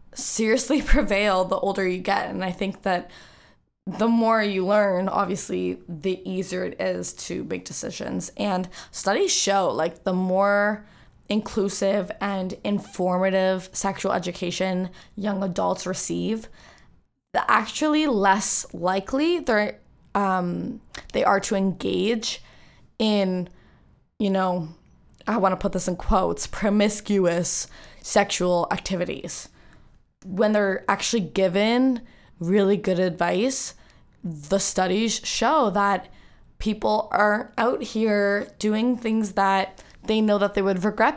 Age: 10-29